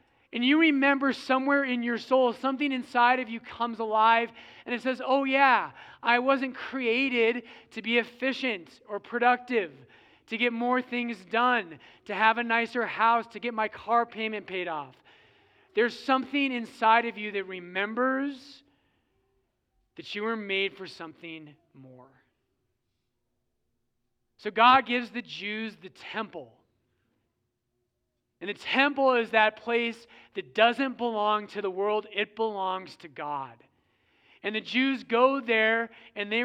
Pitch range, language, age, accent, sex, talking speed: 165-240 Hz, English, 20-39, American, male, 145 wpm